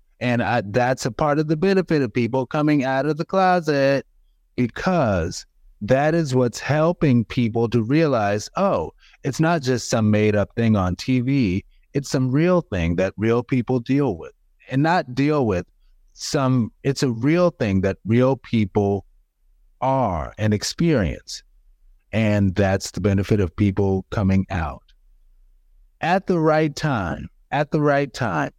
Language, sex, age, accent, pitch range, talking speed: English, male, 30-49, American, 95-135 Hz, 150 wpm